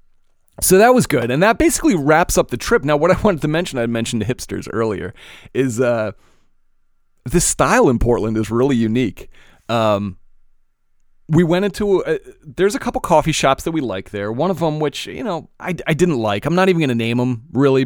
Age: 30-49